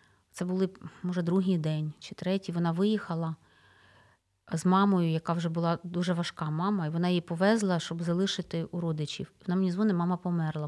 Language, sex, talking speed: Ukrainian, female, 170 wpm